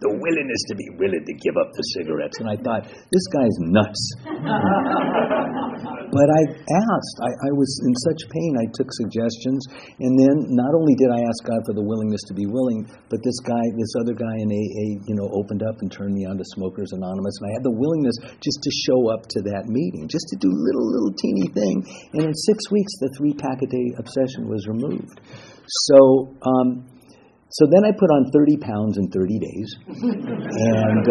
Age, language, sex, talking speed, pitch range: 50-69, English, male, 195 wpm, 105-140 Hz